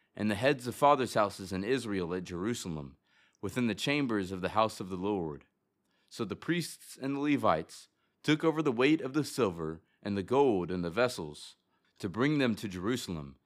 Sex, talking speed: male, 190 wpm